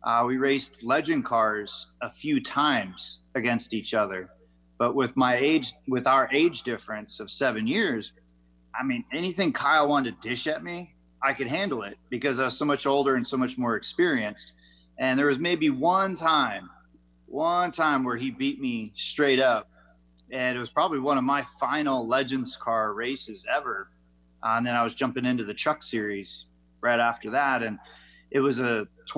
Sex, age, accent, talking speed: male, 30-49, American, 185 wpm